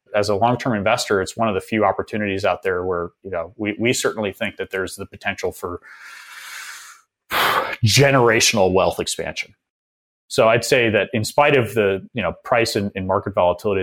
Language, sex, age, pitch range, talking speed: English, male, 30-49, 95-125 Hz, 180 wpm